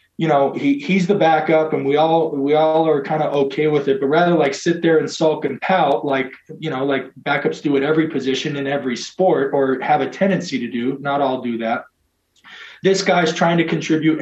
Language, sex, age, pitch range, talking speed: English, male, 20-39, 140-180 Hz, 225 wpm